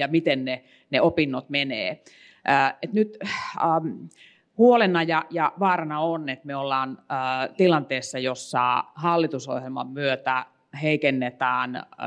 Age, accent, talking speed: 30-49, native, 120 wpm